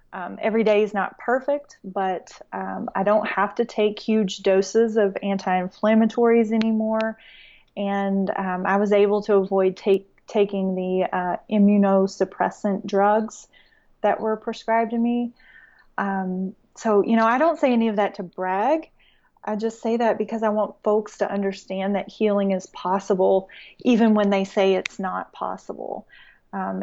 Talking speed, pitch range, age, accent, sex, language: 155 wpm, 195-220 Hz, 30-49, American, female, English